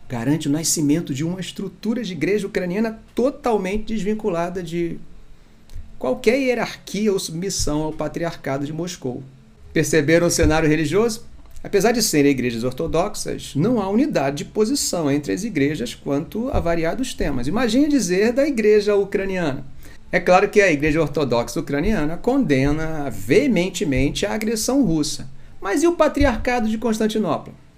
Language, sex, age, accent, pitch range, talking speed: Portuguese, male, 40-59, Brazilian, 155-225 Hz, 140 wpm